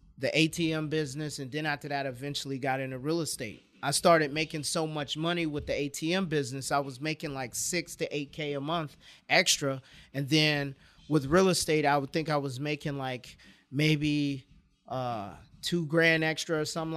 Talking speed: 185 wpm